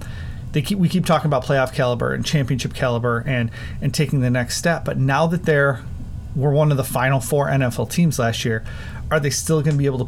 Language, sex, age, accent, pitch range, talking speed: English, male, 30-49, American, 120-145 Hz, 230 wpm